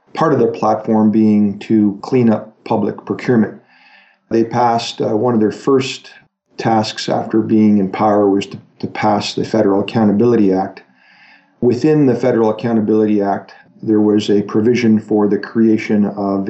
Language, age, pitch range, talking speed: English, 50-69, 105-115 Hz, 155 wpm